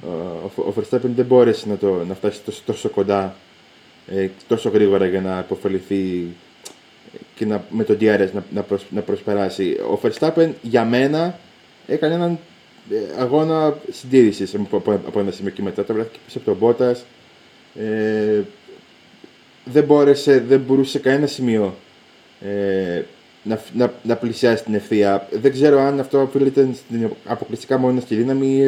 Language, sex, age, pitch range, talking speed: Greek, male, 20-39, 100-135 Hz, 130 wpm